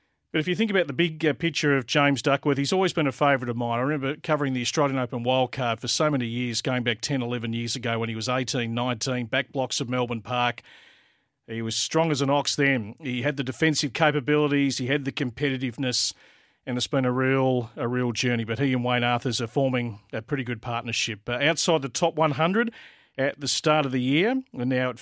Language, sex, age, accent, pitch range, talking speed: English, male, 40-59, Australian, 125-155 Hz, 225 wpm